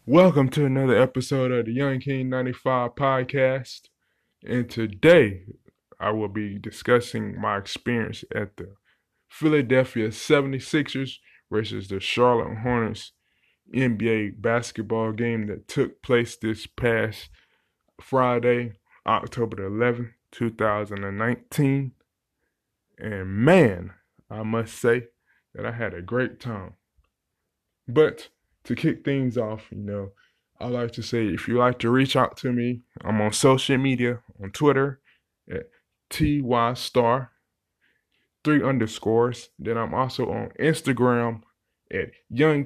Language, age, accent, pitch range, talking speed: English, 20-39, American, 110-135 Hz, 120 wpm